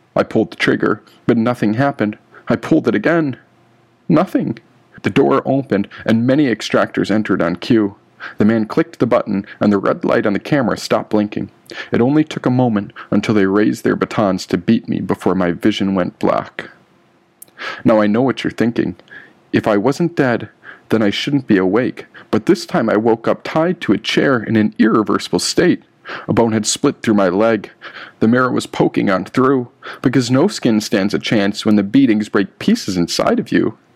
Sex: male